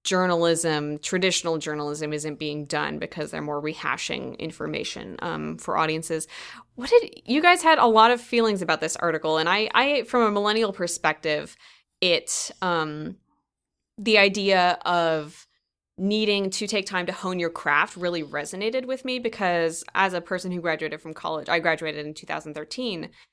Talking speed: 160 wpm